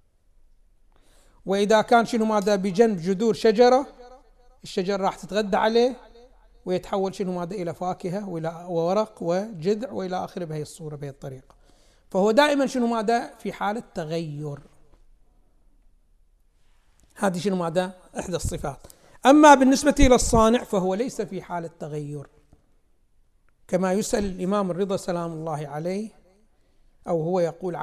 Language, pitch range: Arabic, 175-255 Hz